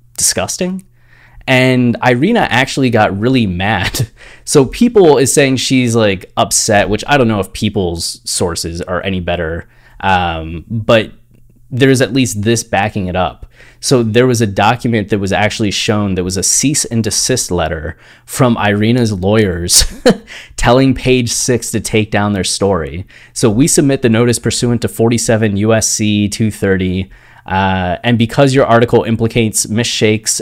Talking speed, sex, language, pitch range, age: 150 wpm, male, English, 100-120 Hz, 20-39